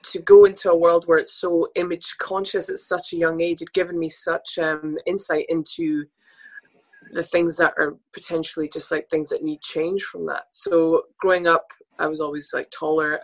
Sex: female